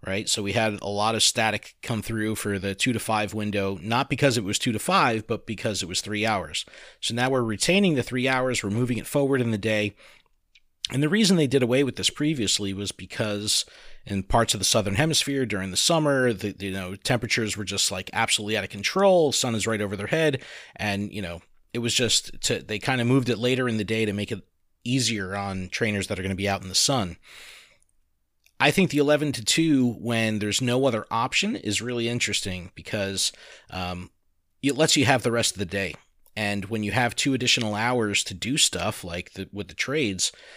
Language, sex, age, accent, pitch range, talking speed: English, male, 30-49, American, 100-130 Hz, 220 wpm